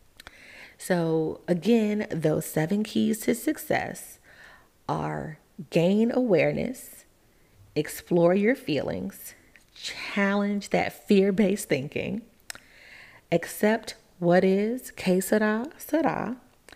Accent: American